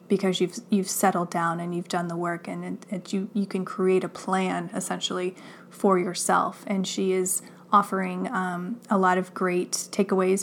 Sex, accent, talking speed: female, American, 175 wpm